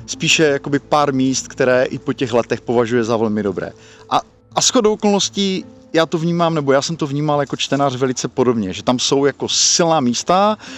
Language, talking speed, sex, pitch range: Czech, 195 wpm, male, 115-140 Hz